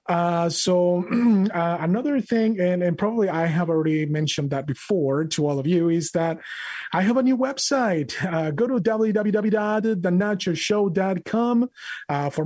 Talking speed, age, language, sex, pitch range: 145 wpm, 30-49, English, male, 155-210 Hz